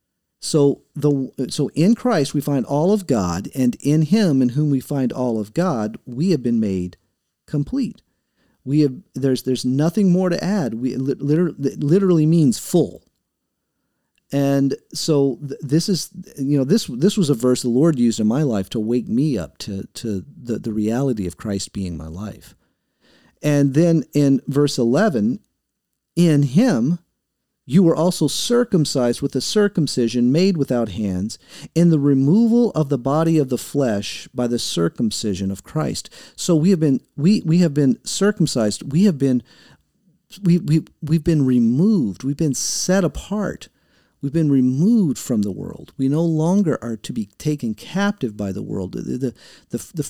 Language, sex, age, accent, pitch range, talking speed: English, male, 40-59, American, 125-175 Hz, 170 wpm